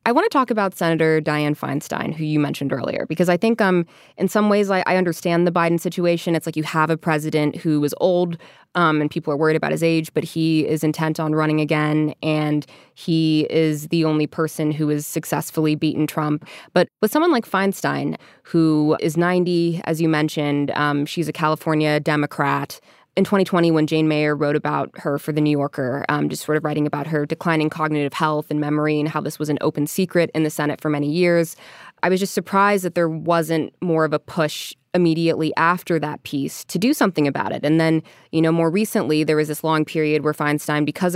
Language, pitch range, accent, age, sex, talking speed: English, 150-170 Hz, American, 20-39, female, 215 wpm